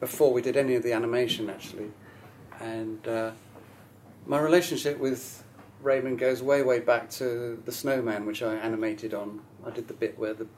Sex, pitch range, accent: male, 110-125 Hz, British